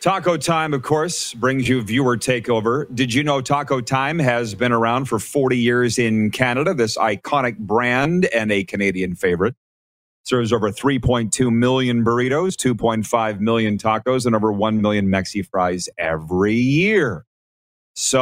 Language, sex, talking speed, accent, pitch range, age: English, male, 150 wpm, American, 105-130 Hz, 40-59